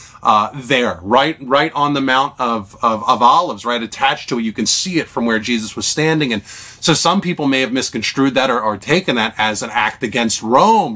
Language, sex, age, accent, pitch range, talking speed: English, male, 30-49, American, 110-155 Hz, 225 wpm